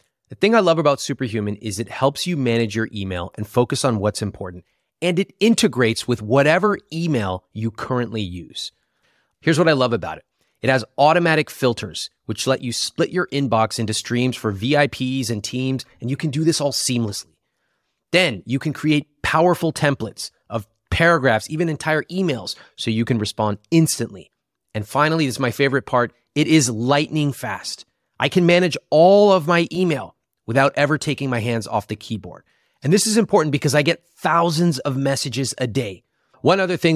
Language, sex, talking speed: English, male, 185 wpm